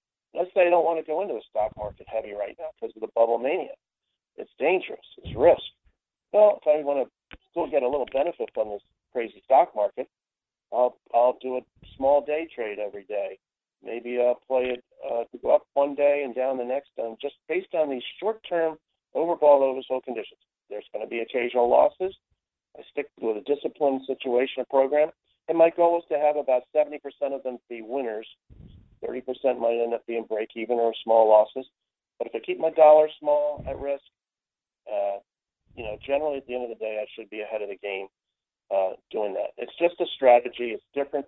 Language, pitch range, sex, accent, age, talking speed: English, 115-150 Hz, male, American, 50-69, 210 wpm